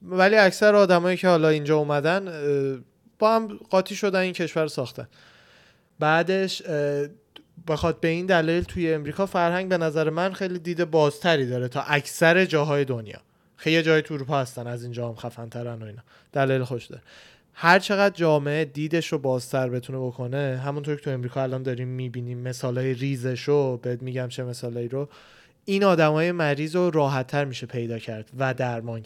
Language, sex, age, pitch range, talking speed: Persian, male, 20-39, 130-155 Hz, 165 wpm